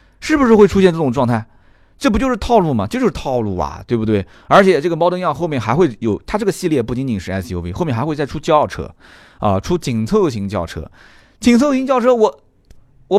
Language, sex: Chinese, male